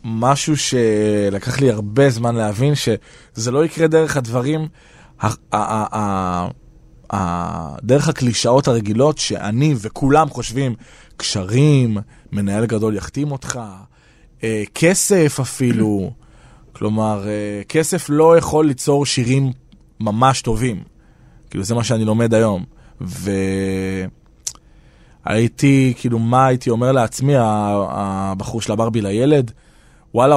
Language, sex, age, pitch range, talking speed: Hebrew, male, 20-39, 110-135 Hz, 95 wpm